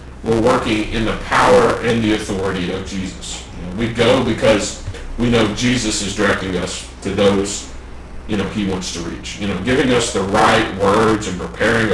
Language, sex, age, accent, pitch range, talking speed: English, male, 40-59, American, 85-105 Hz, 180 wpm